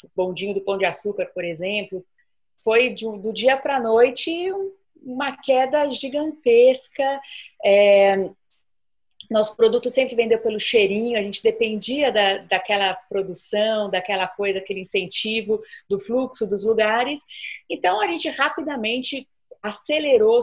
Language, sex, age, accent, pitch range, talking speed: Portuguese, female, 40-59, Brazilian, 195-260 Hz, 125 wpm